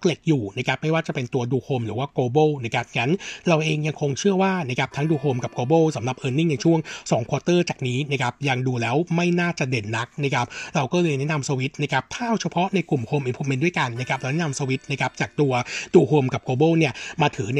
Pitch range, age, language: 130-160 Hz, 60-79, Thai